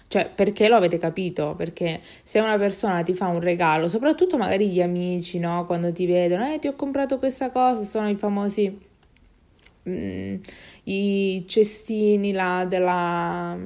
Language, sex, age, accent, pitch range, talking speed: Italian, female, 20-39, native, 175-210 Hz, 155 wpm